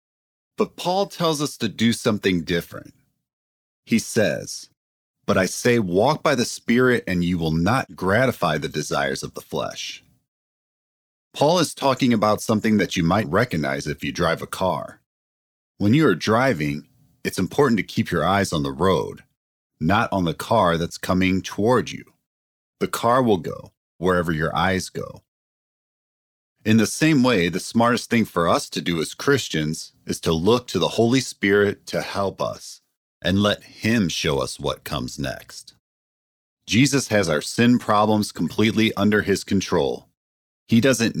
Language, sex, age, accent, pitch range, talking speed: English, male, 40-59, American, 85-110 Hz, 165 wpm